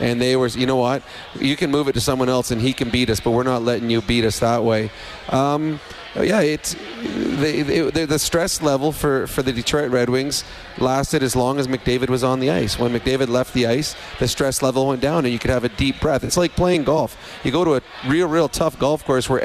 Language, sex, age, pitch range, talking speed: English, male, 30-49, 125-145 Hz, 250 wpm